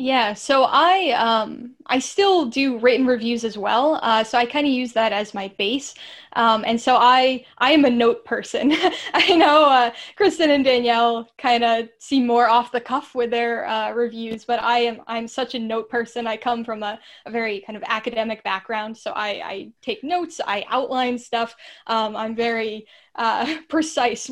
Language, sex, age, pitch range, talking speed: English, female, 10-29, 225-255 Hz, 190 wpm